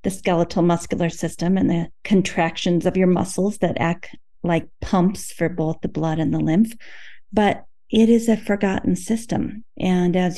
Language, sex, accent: English, female, American